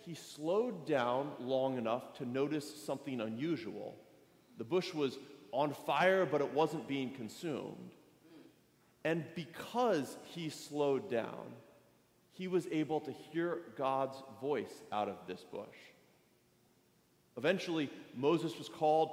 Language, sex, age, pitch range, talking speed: English, male, 30-49, 135-170 Hz, 120 wpm